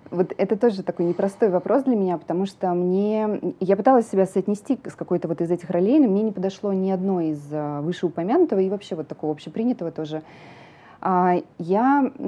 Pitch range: 175-220 Hz